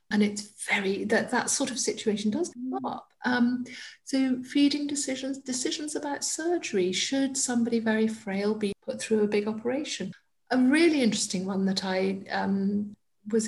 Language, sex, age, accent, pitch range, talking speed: English, female, 50-69, British, 195-255 Hz, 160 wpm